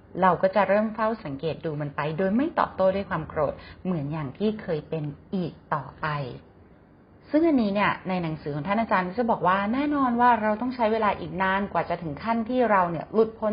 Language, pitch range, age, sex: Thai, 165-220 Hz, 30-49, female